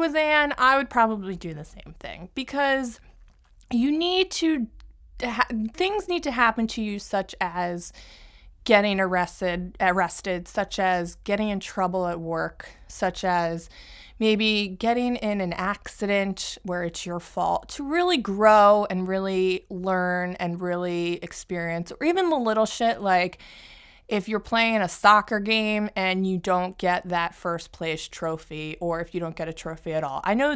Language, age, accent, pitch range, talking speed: English, 20-39, American, 180-225 Hz, 165 wpm